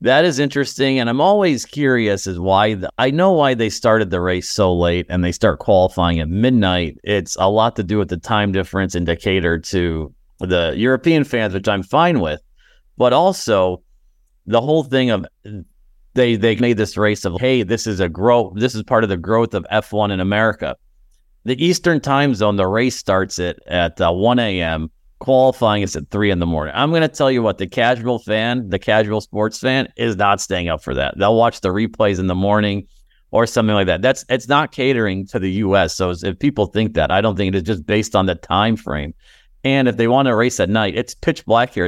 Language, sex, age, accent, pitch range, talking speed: English, male, 40-59, American, 95-120 Hz, 220 wpm